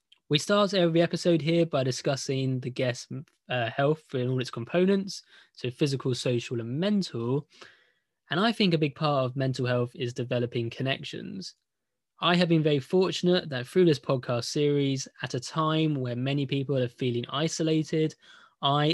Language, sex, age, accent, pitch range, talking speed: English, male, 20-39, British, 125-160 Hz, 165 wpm